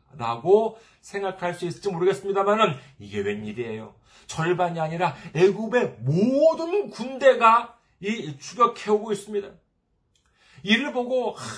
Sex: male